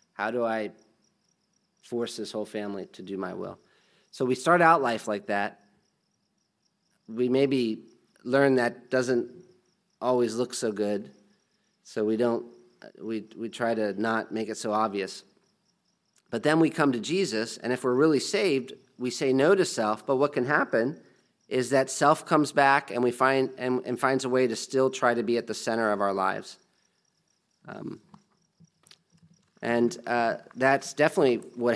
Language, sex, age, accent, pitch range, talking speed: English, male, 40-59, American, 110-135 Hz, 170 wpm